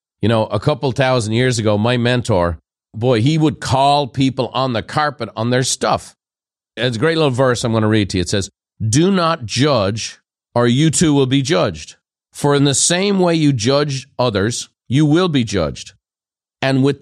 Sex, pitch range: male, 110-150 Hz